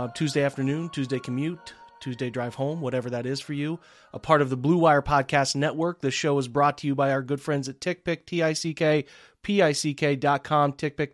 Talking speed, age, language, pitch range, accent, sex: 190 wpm, 30-49, English, 135-165 Hz, American, male